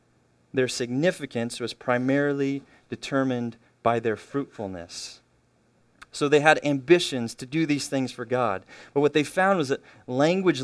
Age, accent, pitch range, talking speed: 30-49, American, 110-140 Hz, 140 wpm